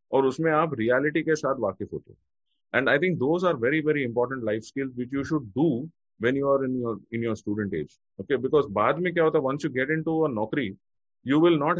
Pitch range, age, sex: 120-155 Hz, 30-49, male